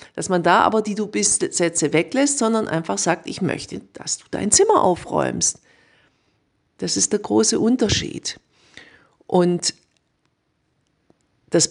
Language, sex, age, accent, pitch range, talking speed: German, female, 50-69, German, 160-215 Hz, 135 wpm